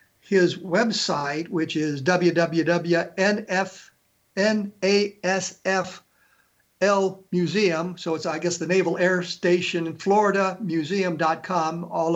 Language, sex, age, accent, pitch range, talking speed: English, male, 60-79, American, 170-205 Hz, 80 wpm